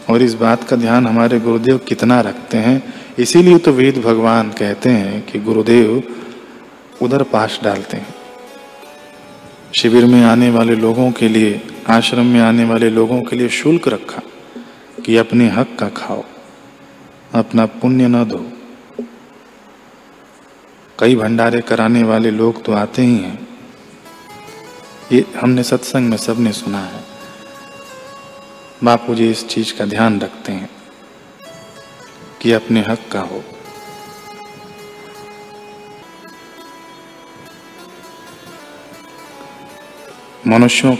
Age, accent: 40-59, native